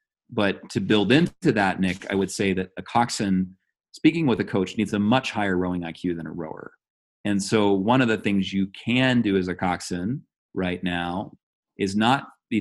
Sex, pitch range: male, 95-110 Hz